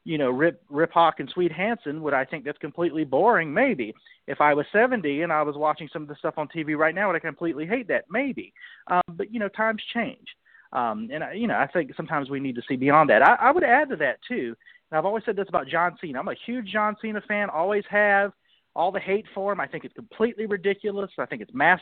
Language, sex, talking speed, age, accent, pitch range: English, male, 260 wpm, 40-59, American, 150-205 Hz